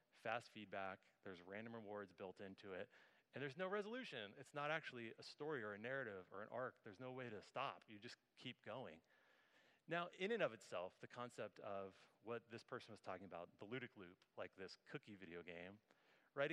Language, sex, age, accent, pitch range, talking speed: English, male, 30-49, American, 105-140 Hz, 200 wpm